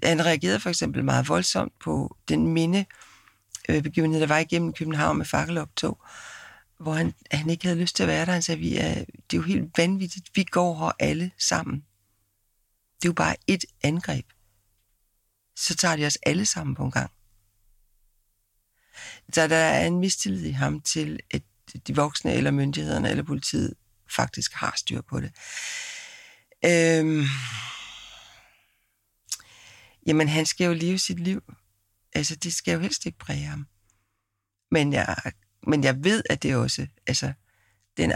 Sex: female